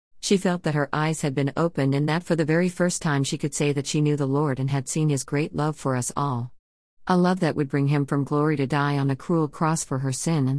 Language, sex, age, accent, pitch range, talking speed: English, female, 50-69, American, 130-165 Hz, 285 wpm